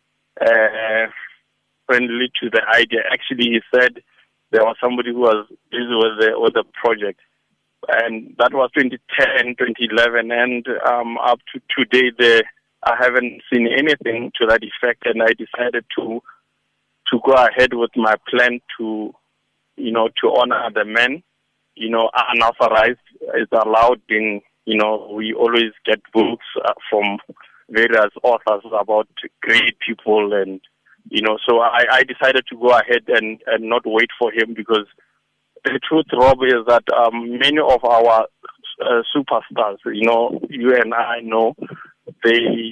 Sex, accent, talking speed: male, South African, 150 wpm